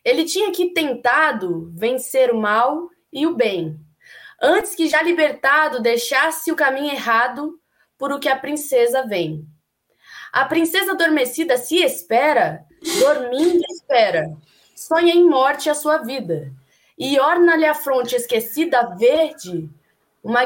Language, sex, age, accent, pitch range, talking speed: Portuguese, female, 20-39, Brazilian, 235-335 Hz, 130 wpm